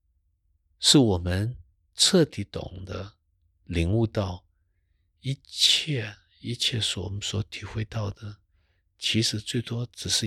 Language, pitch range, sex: Chinese, 85-110 Hz, male